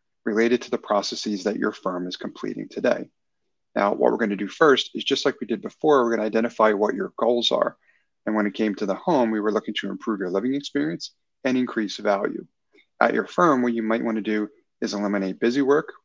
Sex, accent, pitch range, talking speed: male, American, 100-125 Hz, 220 wpm